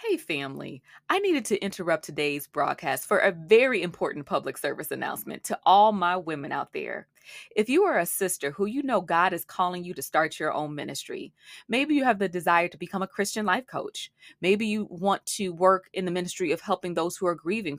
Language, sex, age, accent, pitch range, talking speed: English, female, 20-39, American, 175-240 Hz, 215 wpm